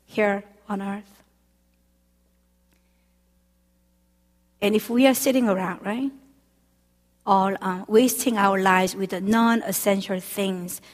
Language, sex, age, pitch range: Korean, female, 50-69, 185-245 Hz